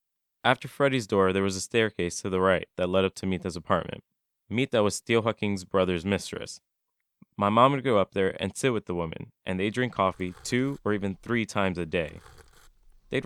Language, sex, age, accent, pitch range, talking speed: English, male, 20-39, American, 95-115 Hz, 205 wpm